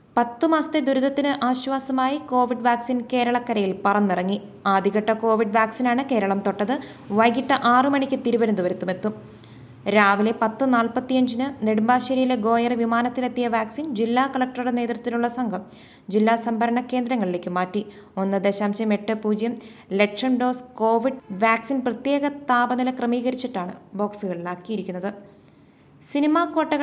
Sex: female